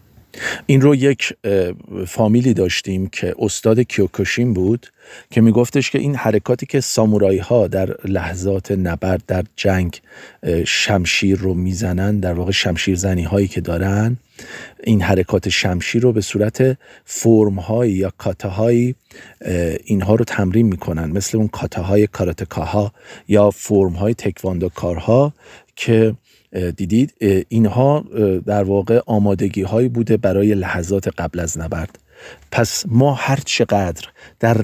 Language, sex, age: Persian, male, 40-59